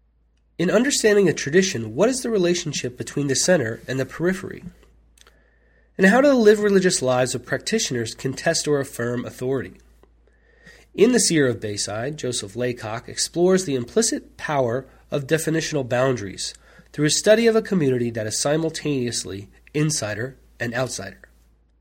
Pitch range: 120-170 Hz